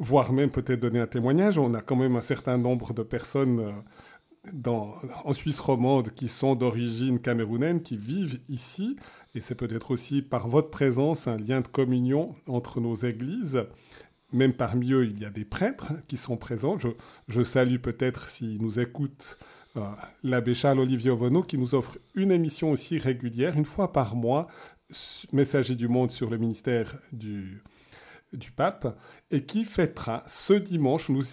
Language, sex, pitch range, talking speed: French, male, 120-150 Hz, 165 wpm